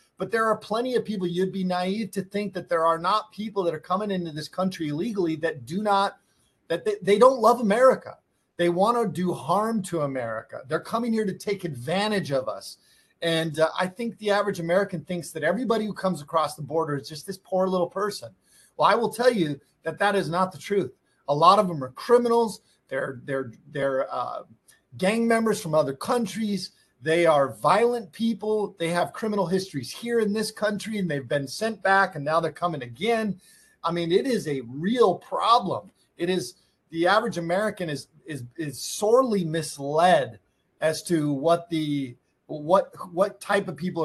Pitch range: 155-205 Hz